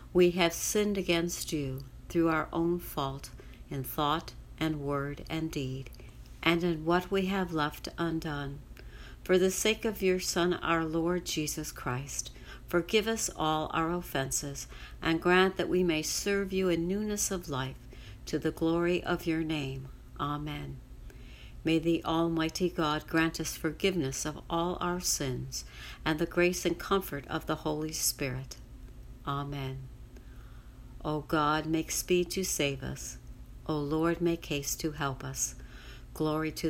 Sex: female